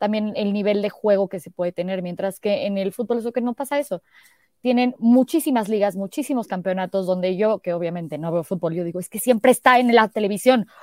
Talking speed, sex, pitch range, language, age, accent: 220 wpm, female, 195-245 Hz, Spanish, 20-39, Mexican